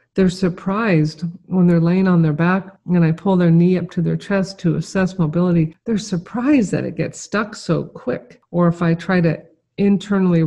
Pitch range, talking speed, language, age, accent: 155-180 Hz, 195 wpm, English, 50-69, American